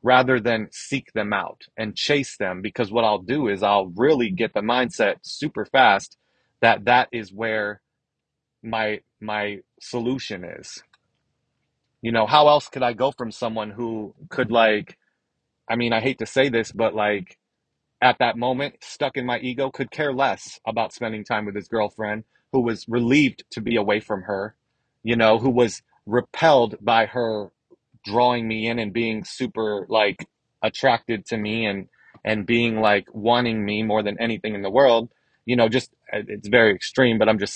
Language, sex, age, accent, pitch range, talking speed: English, male, 30-49, American, 110-130 Hz, 175 wpm